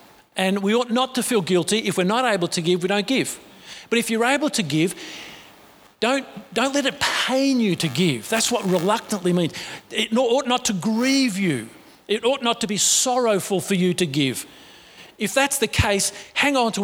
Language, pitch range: English, 175-235 Hz